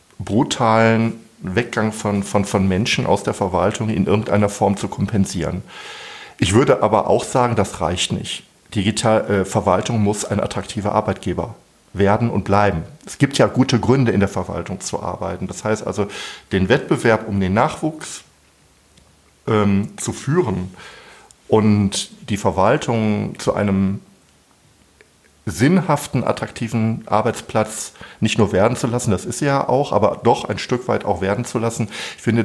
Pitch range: 100-115 Hz